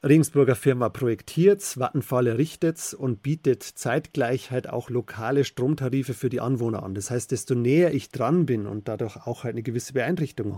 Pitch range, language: 120-140 Hz, German